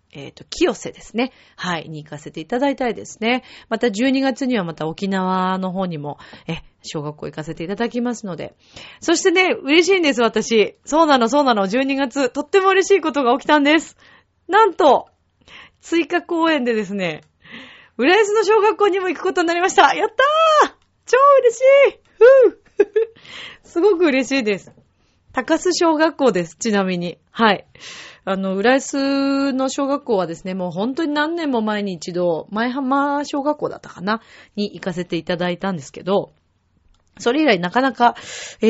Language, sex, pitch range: Japanese, female, 185-300 Hz